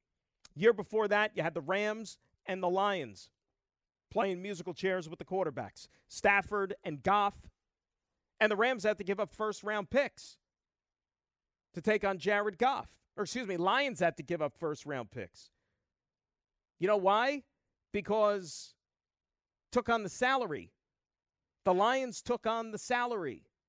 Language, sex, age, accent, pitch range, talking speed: English, male, 40-59, American, 165-225 Hz, 145 wpm